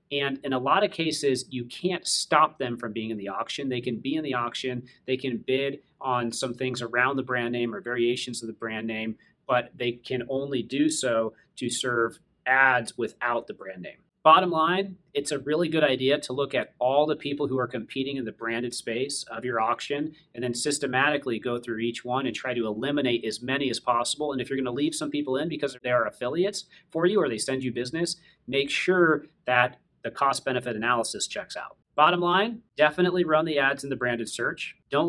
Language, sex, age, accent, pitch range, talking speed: English, male, 30-49, American, 125-155 Hz, 215 wpm